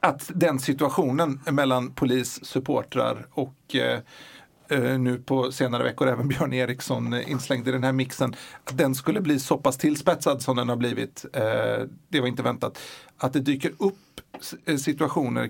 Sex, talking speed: male, 155 wpm